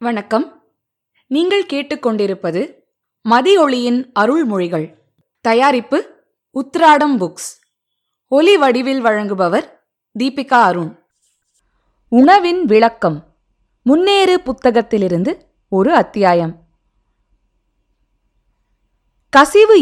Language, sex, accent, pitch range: Tamil, female, native, 195-300 Hz